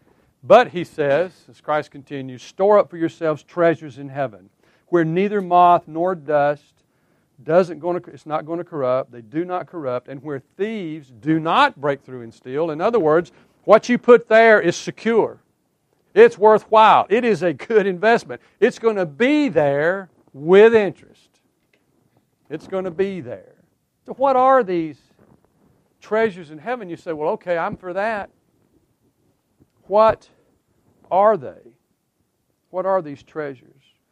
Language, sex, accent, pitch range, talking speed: English, male, American, 150-200 Hz, 155 wpm